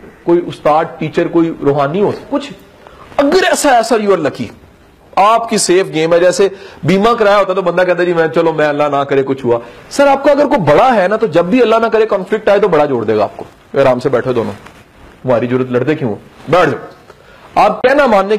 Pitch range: 150-220 Hz